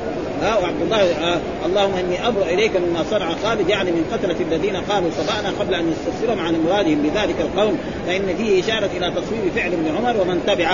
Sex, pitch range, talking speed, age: male, 175-235 Hz, 195 wpm, 40-59